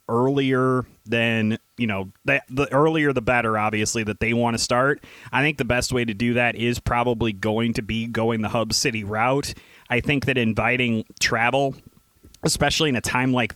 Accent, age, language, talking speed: American, 30-49, English, 190 wpm